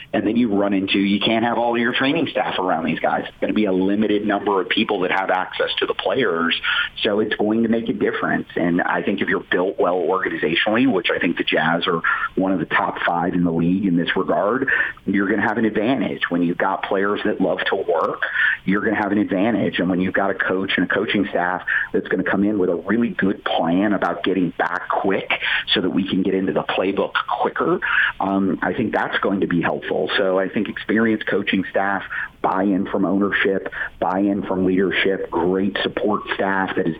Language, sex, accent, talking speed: English, male, American, 230 wpm